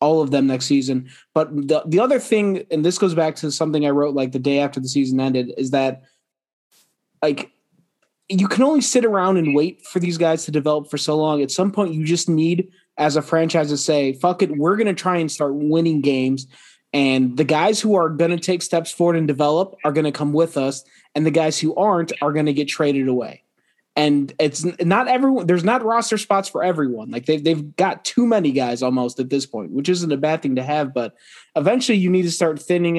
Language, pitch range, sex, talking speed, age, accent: English, 135-170 Hz, male, 235 wpm, 20-39, American